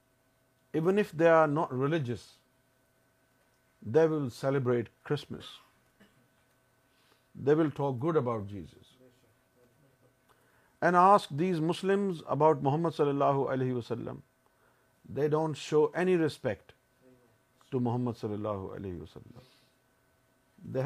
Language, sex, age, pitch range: Urdu, male, 50-69, 120-145 Hz